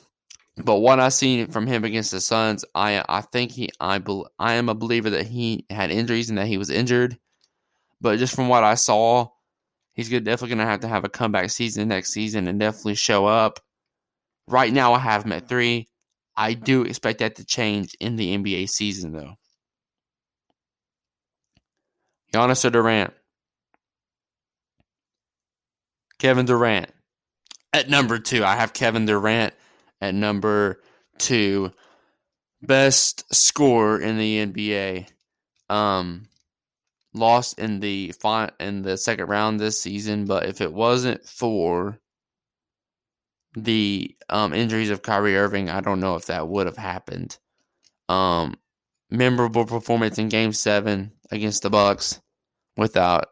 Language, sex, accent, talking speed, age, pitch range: English, male, American, 140 wpm, 20-39, 100-115 Hz